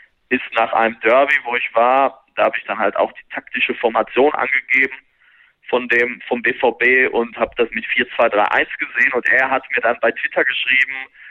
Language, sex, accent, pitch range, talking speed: German, male, German, 120-145 Hz, 185 wpm